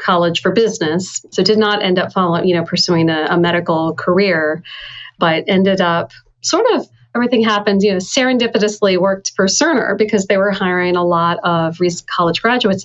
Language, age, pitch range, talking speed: English, 40-59, 170-195 Hz, 180 wpm